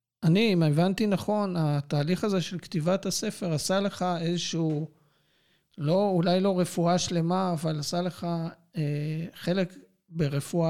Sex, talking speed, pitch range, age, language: male, 130 wpm, 160-190 Hz, 50-69, Hebrew